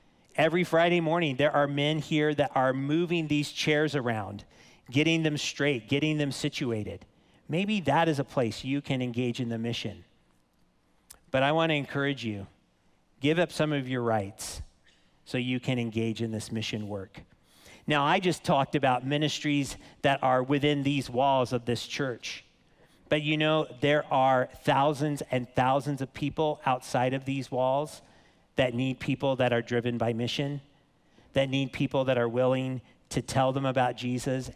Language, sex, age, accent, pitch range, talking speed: English, male, 40-59, American, 120-145 Hz, 165 wpm